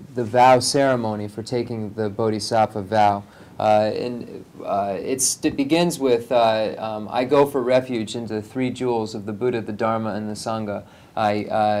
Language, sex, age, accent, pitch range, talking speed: English, male, 30-49, American, 105-125 Hz, 175 wpm